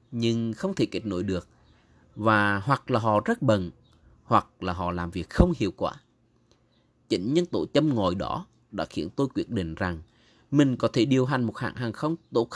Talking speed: 200 wpm